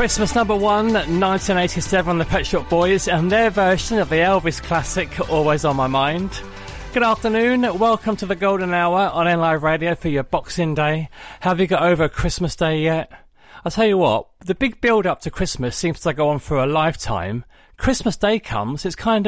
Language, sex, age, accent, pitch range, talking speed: English, male, 30-49, British, 140-195 Hz, 195 wpm